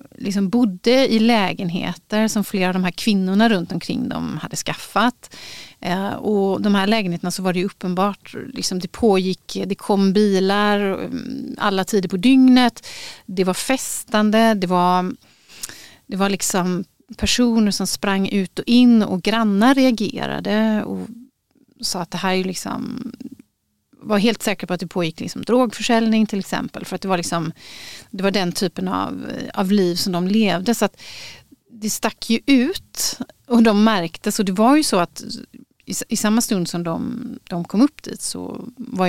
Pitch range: 185-230 Hz